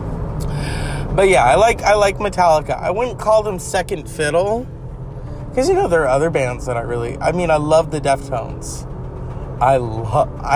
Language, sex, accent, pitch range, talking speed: English, male, American, 125-155 Hz, 175 wpm